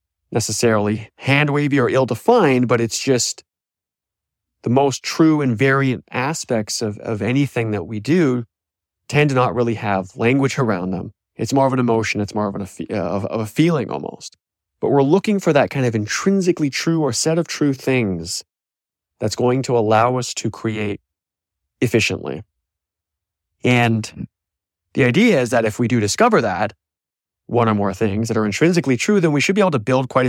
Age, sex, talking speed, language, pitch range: 20-39, male, 175 wpm, English, 105-135 Hz